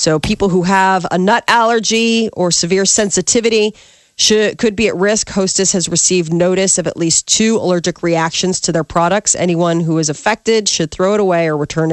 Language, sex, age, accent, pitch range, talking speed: English, female, 40-59, American, 170-215 Hz, 190 wpm